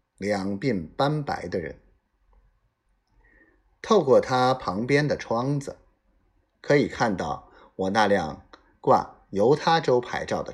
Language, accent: Chinese, native